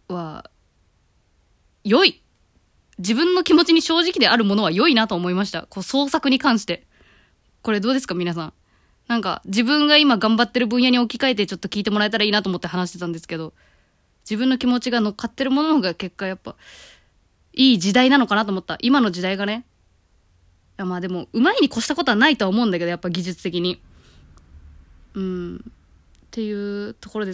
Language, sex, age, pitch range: Japanese, female, 20-39, 180-255 Hz